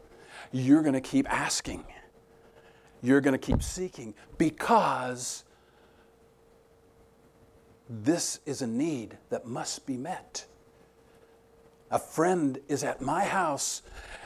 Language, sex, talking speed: English, male, 105 wpm